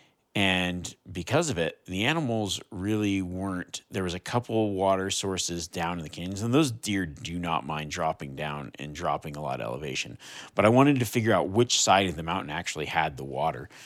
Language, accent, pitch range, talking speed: English, American, 85-110 Hz, 210 wpm